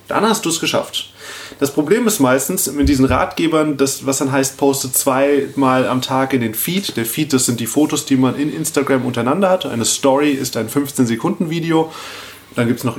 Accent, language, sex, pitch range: German, German, male, 130-155 Hz